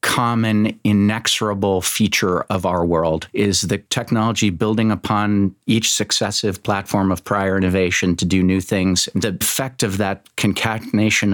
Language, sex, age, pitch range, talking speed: English, male, 50-69, 95-110 Hz, 140 wpm